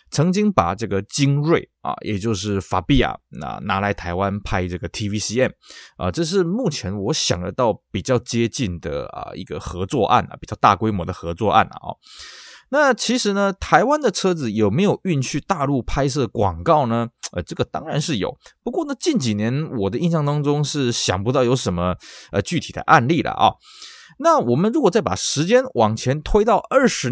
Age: 20-39